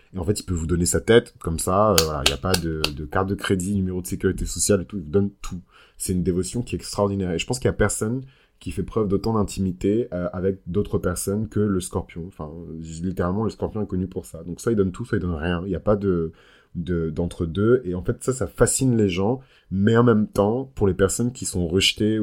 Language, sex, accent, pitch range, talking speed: French, male, French, 90-105 Hz, 265 wpm